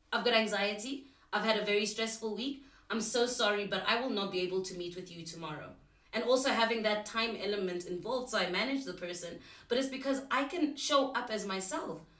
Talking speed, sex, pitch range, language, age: 215 wpm, female, 195-255 Hz, English, 30-49